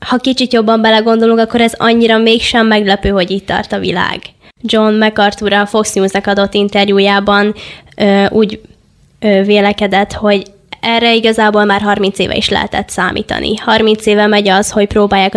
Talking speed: 155 wpm